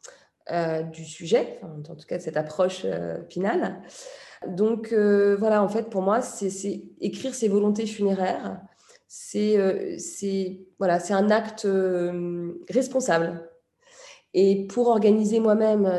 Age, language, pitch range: 20-39, French, 170-210 Hz